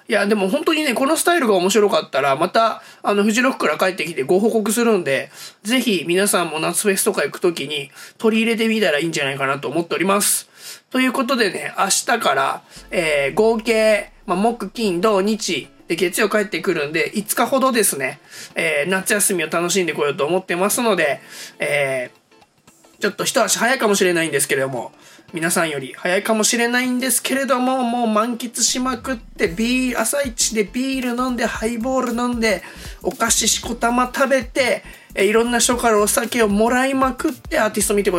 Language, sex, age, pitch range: Japanese, male, 20-39, 190-250 Hz